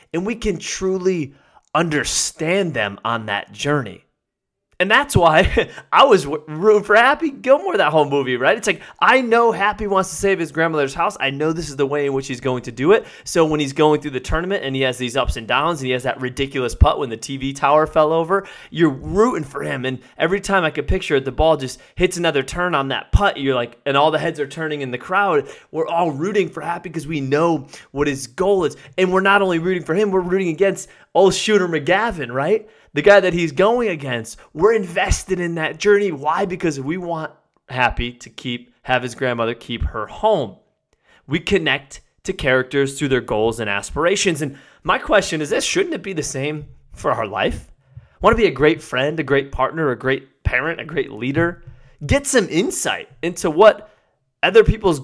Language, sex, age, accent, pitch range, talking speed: English, male, 20-39, American, 135-190 Hz, 215 wpm